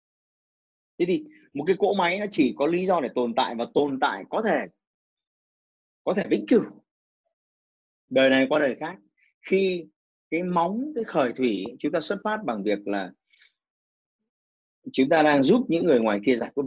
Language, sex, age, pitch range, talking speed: Vietnamese, male, 30-49, 145-235 Hz, 185 wpm